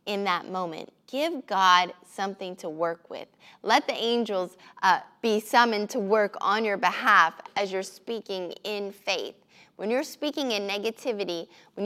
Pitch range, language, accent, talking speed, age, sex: 185-225 Hz, English, American, 155 wpm, 20-39, female